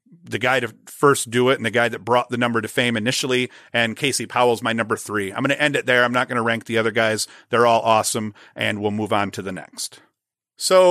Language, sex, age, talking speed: English, male, 40-59, 250 wpm